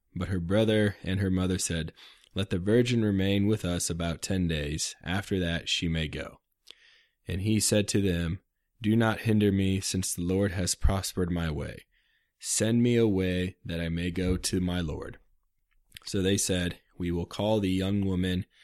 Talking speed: 180 wpm